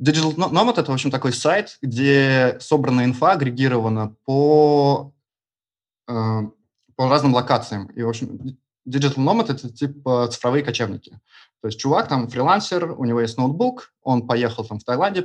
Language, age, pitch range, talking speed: Russian, 20-39, 115-145 Hz, 155 wpm